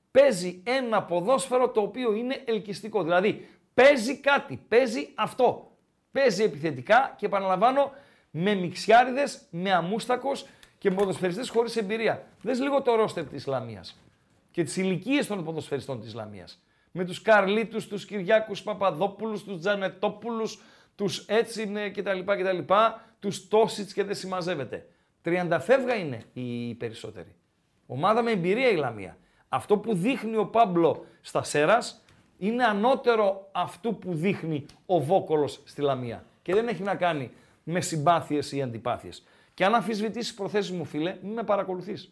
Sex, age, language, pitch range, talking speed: male, 50-69, Greek, 150-220 Hz, 140 wpm